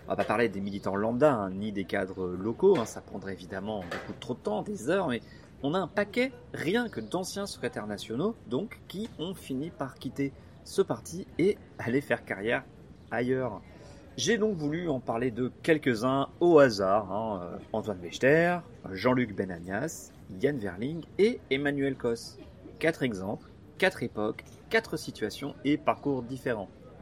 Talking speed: 160 wpm